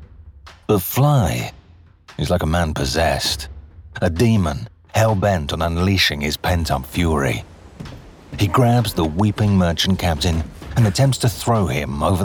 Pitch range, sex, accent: 75-100 Hz, male, British